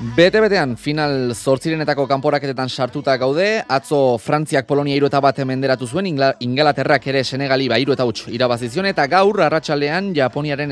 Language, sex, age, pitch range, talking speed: Spanish, male, 20-39, 125-155 Hz, 140 wpm